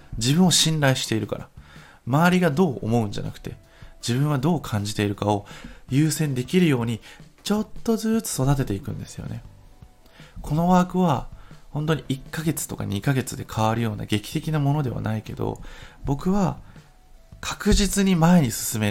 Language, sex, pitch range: Japanese, male, 100-150 Hz